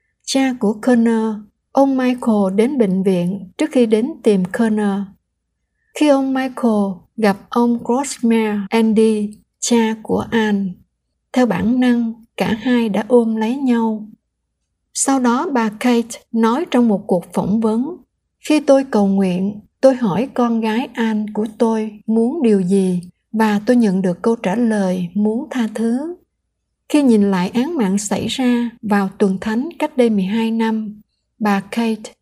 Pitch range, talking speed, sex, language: 205-245 Hz, 155 wpm, female, Vietnamese